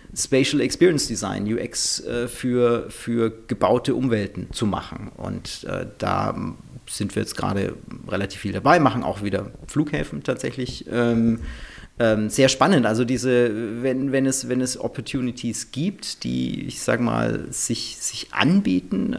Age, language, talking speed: 40-59, English, 140 wpm